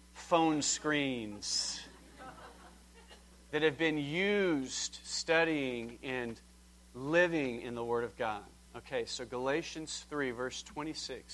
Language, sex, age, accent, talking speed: English, male, 40-59, American, 105 wpm